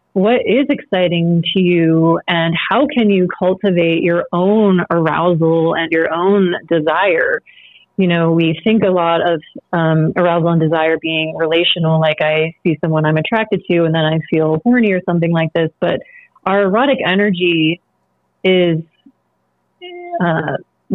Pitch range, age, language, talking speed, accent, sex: 165-195 Hz, 30-49, English, 150 wpm, American, female